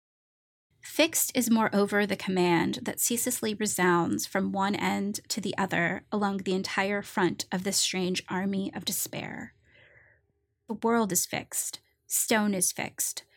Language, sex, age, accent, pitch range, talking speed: English, female, 20-39, American, 180-210 Hz, 140 wpm